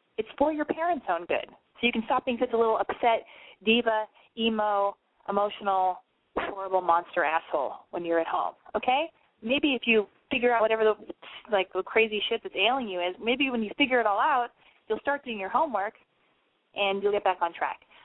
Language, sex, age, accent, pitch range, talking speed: English, female, 20-39, American, 195-275 Hz, 195 wpm